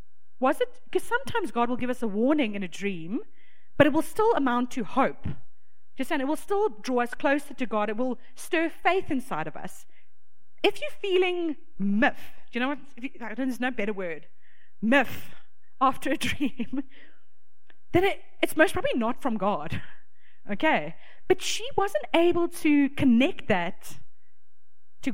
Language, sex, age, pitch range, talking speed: English, female, 30-49, 220-315 Hz, 170 wpm